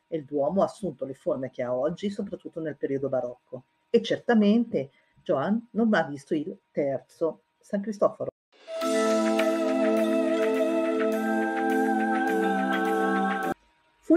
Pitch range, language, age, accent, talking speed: 145-200 Hz, Italian, 50-69, native, 105 wpm